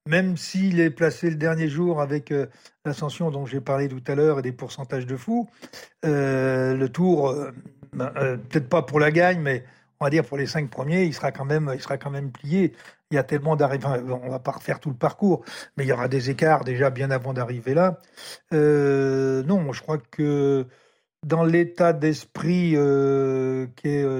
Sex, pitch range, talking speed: male, 135-160 Hz, 215 wpm